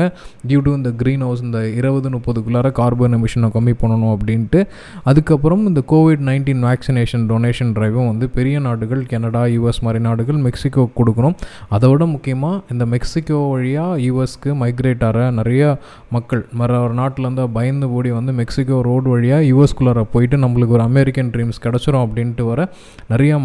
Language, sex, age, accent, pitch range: Tamil, male, 20-39, native, 120-145 Hz